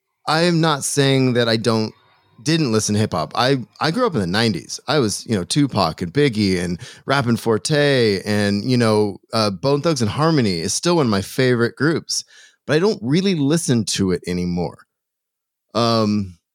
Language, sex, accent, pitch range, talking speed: English, male, American, 105-140 Hz, 190 wpm